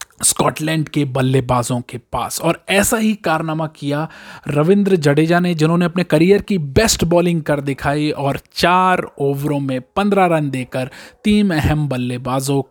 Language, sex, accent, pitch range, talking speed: Hindi, male, native, 135-185 Hz, 145 wpm